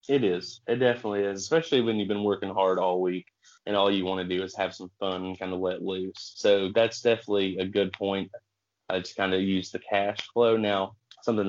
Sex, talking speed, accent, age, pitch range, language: male, 230 wpm, American, 30-49, 95-105 Hz, English